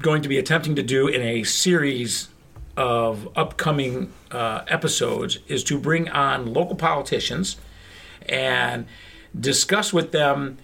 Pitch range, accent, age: 115-170 Hz, American, 50-69